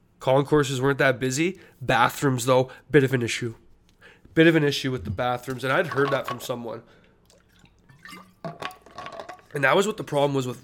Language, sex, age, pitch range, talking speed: English, male, 20-39, 115-130 Hz, 175 wpm